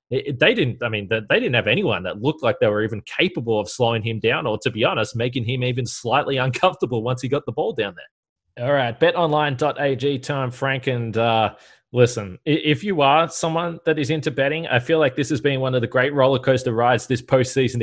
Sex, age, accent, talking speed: male, 20-39, Australian, 220 wpm